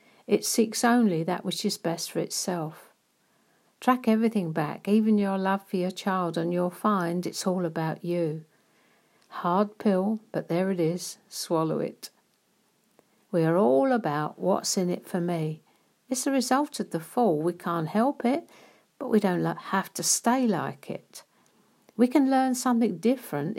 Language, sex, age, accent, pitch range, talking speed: English, female, 60-79, British, 175-225 Hz, 165 wpm